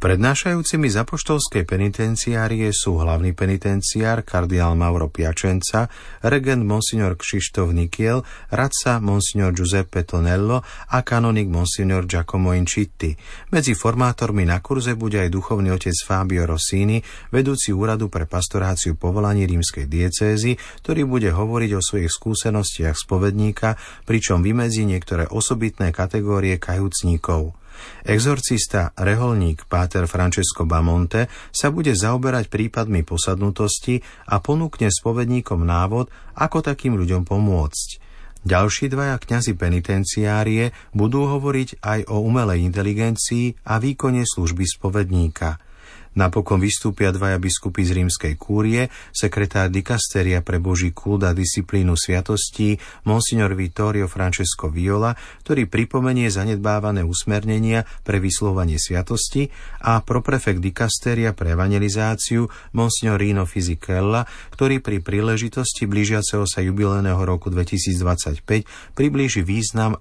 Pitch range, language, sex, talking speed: 90-115 Hz, Slovak, male, 110 wpm